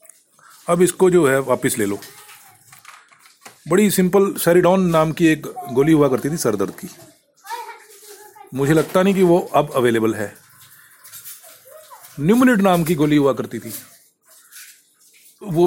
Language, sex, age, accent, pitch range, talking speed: Hindi, male, 40-59, native, 150-235 Hz, 135 wpm